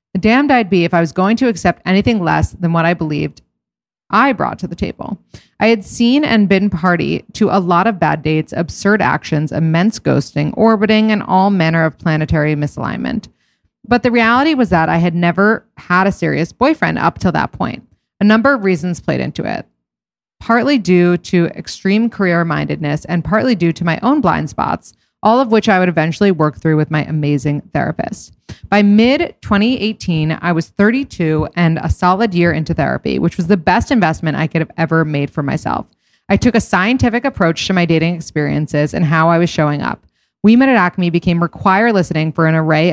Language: English